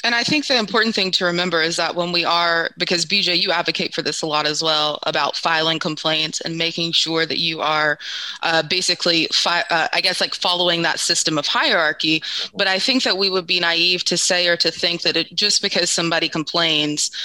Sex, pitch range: female, 160-185 Hz